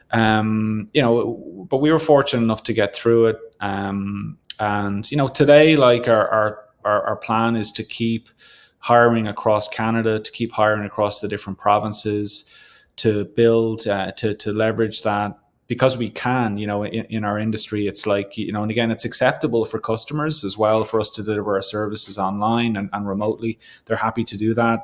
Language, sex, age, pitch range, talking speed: English, male, 20-39, 105-115 Hz, 190 wpm